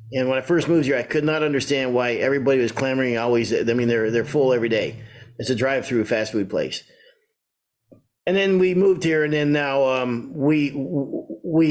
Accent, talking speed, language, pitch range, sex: American, 205 wpm, English, 130-190 Hz, male